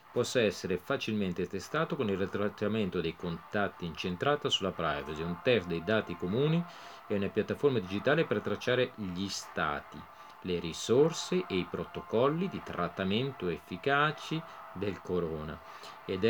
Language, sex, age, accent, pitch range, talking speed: Italian, male, 40-59, native, 90-135 Hz, 135 wpm